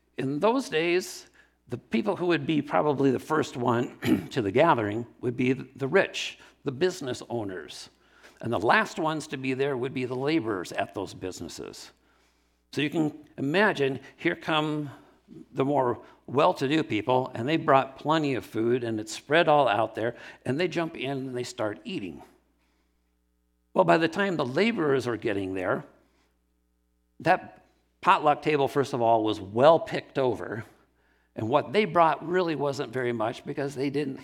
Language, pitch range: English, 115-160 Hz